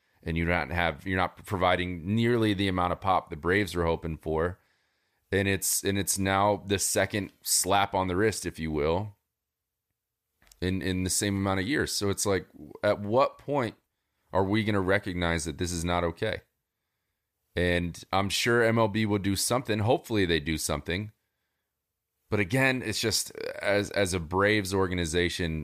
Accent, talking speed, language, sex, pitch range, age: American, 170 wpm, English, male, 85-105 Hz, 30-49